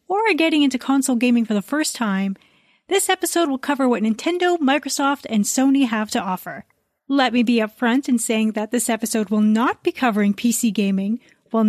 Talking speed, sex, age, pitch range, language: 195 wpm, female, 30-49, 215-285 Hz, English